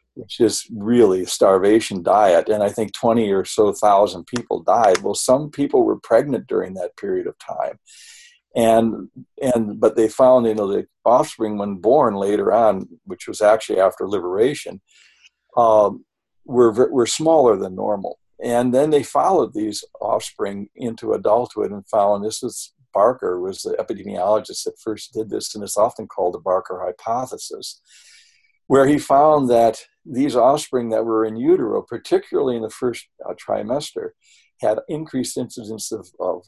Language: English